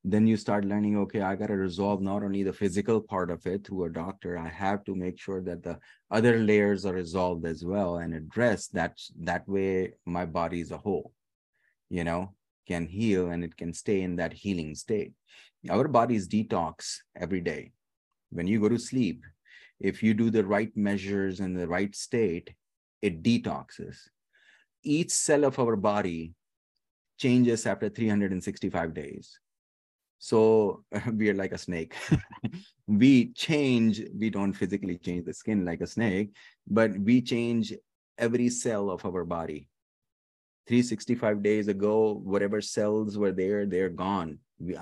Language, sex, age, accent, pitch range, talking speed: English, male, 30-49, Indian, 90-110 Hz, 160 wpm